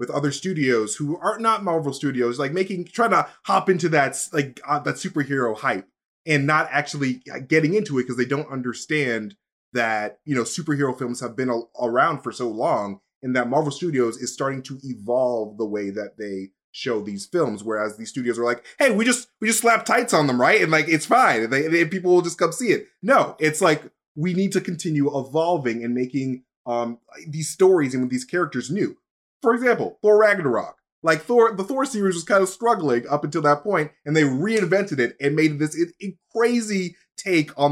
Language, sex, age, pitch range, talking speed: English, male, 20-39, 130-185 Hz, 205 wpm